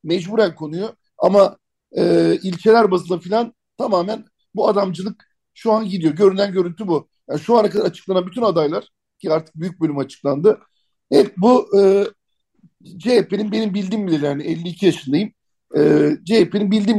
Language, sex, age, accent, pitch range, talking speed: Turkish, male, 60-79, native, 155-205 Hz, 145 wpm